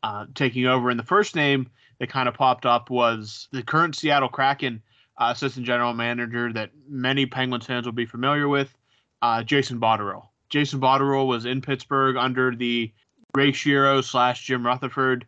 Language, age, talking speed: English, 20-39, 175 wpm